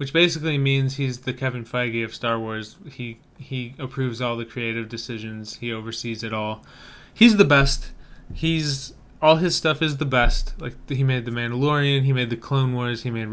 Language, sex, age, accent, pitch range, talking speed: English, male, 20-39, American, 120-145 Hz, 200 wpm